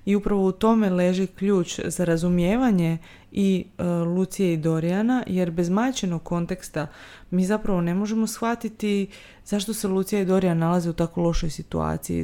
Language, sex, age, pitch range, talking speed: Croatian, female, 20-39, 165-195 Hz, 155 wpm